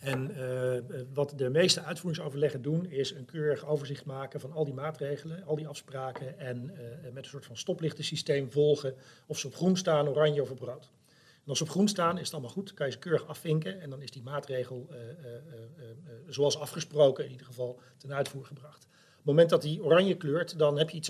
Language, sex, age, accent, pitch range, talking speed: Dutch, male, 40-59, Dutch, 135-160 Hz, 225 wpm